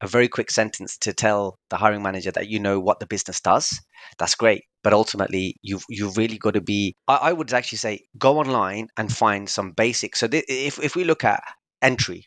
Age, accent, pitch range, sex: 30-49, British, 100-125 Hz, male